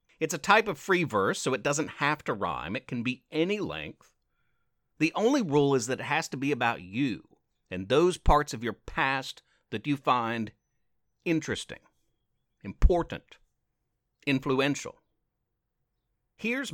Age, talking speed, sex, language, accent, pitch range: 50-69, 145 wpm, male, English, American, 120-145 Hz